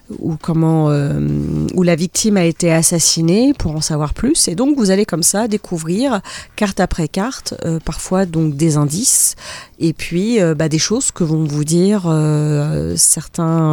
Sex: female